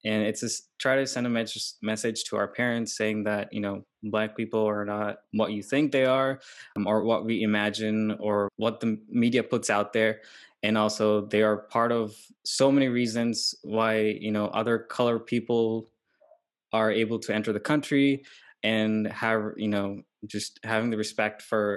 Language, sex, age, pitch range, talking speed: Telugu, male, 20-39, 105-120 Hz, 180 wpm